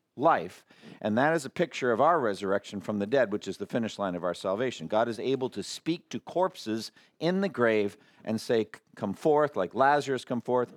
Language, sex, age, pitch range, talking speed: English, male, 50-69, 115-150 Hz, 210 wpm